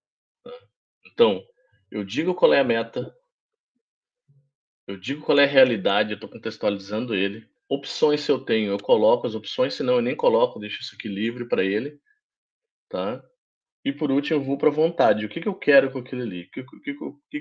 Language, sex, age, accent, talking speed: Portuguese, male, 20-39, Brazilian, 190 wpm